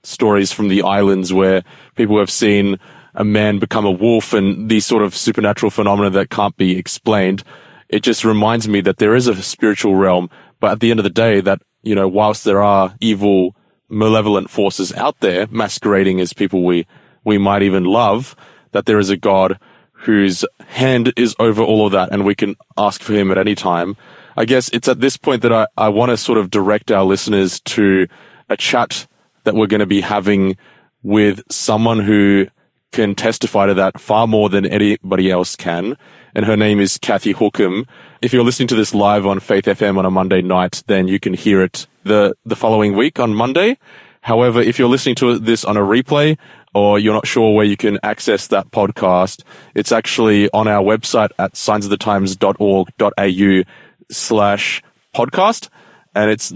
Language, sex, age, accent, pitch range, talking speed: English, male, 20-39, Australian, 95-110 Hz, 190 wpm